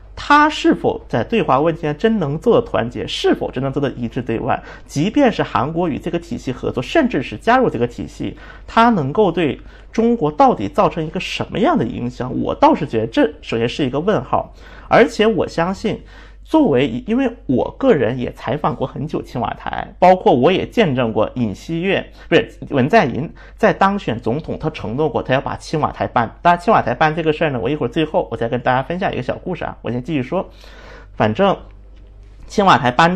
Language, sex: Chinese, male